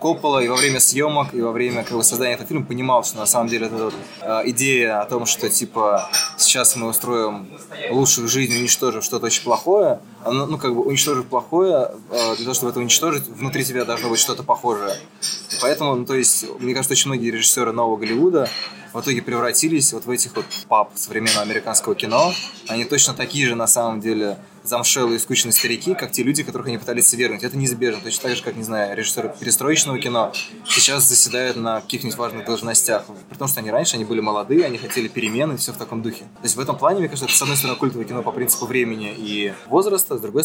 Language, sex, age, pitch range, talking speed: Russian, male, 20-39, 115-130 Hz, 215 wpm